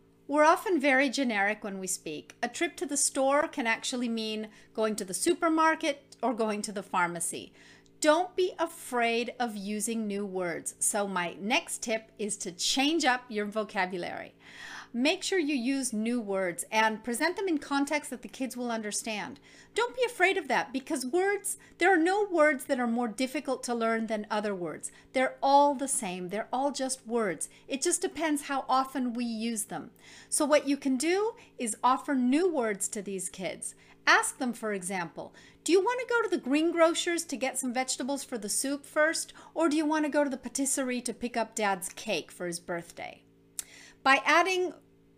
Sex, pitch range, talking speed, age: female, 220-300 Hz, 190 wpm, 40-59